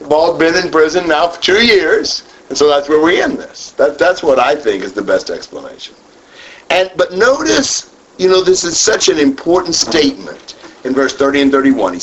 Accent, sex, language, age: American, male, English, 50-69